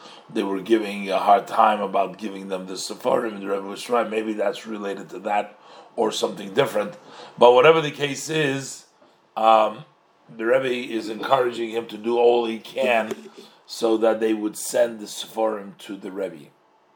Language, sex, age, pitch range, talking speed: English, male, 40-59, 100-130 Hz, 175 wpm